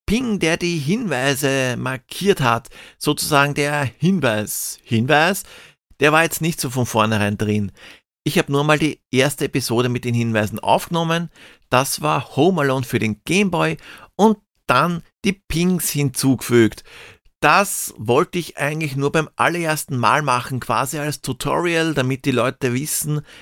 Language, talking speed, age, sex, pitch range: German, 145 wpm, 50-69, male, 120-155 Hz